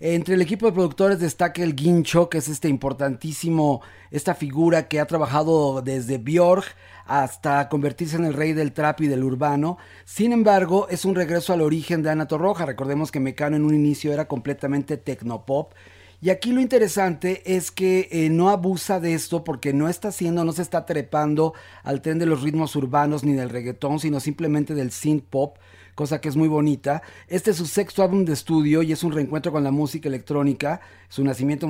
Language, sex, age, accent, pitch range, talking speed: Spanish, male, 40-59, Mexican, 140-170 Hz, 195 wpm